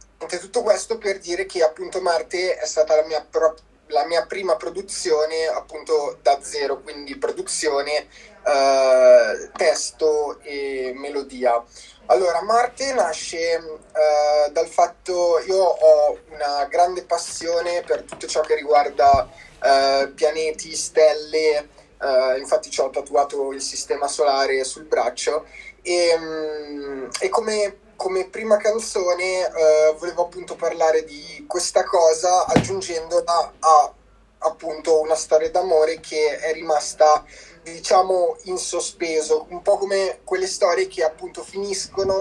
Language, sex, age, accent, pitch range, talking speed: Italian, male, 20-39, native, 155-190 Hz, 120 wpm